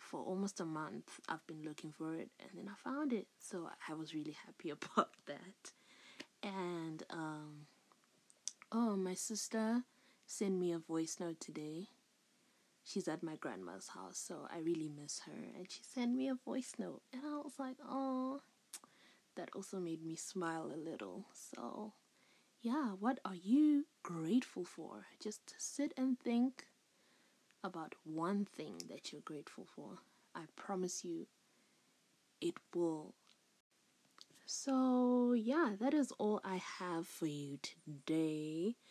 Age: 20-39